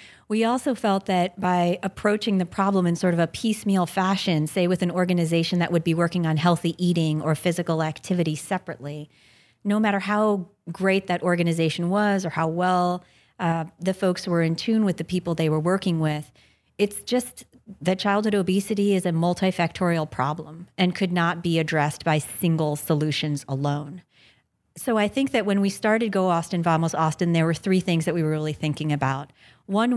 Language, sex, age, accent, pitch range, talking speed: English, female, 30-49, American, 160-195 Hz, 185 wpm